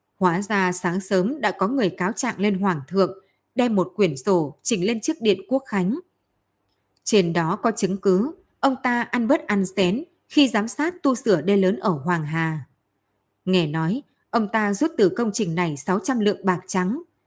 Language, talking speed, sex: Vietnamese, 195 wpm, female